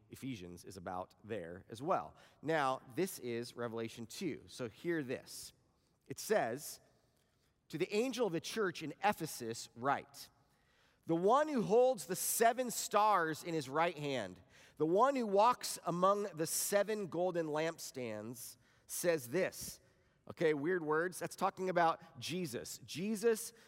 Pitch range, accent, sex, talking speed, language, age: 135-185 Hz, American, male, 140 wpm, English, 30-49